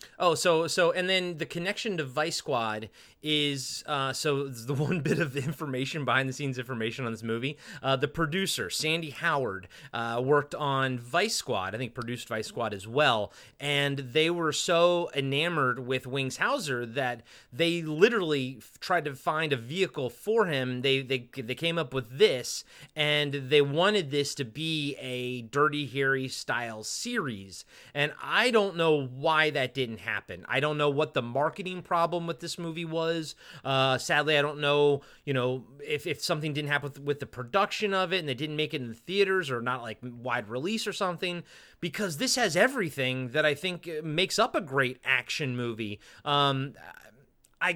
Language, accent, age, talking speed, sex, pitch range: English, American, 30-49, 185 wpm, male, 130-170 Hz